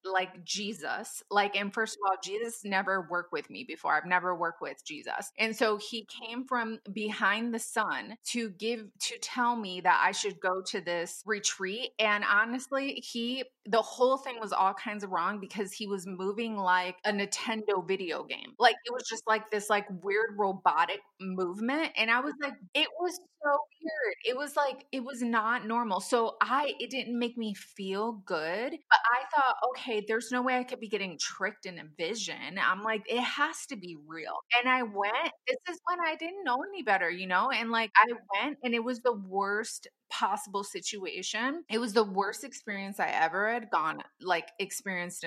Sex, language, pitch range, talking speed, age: female, English, 195-250 Hz, 195 wpm, 20-39